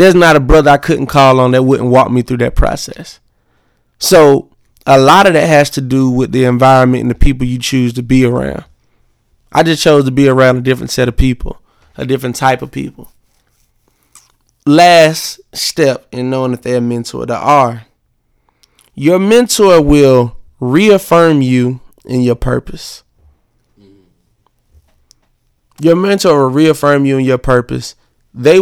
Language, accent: English, American